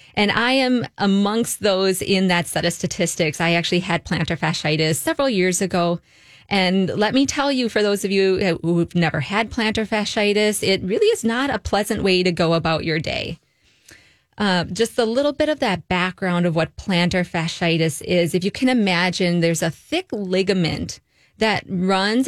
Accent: American